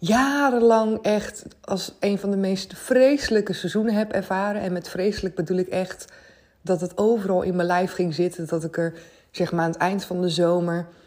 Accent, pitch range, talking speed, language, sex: Dutch, 160-200 Hz, 195 wpm, Dutch, female